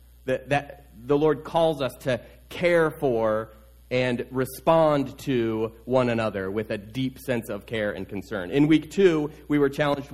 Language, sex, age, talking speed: English, male, 30-49, 160 wpm